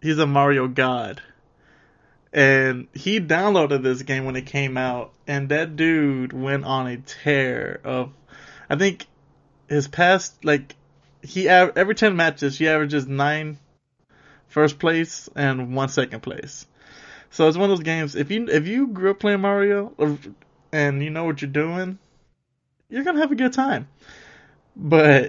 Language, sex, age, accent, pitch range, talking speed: English, male, 20-39, American, 135-170 Hz, 160 wpm